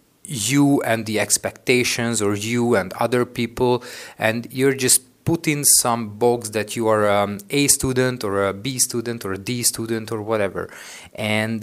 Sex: male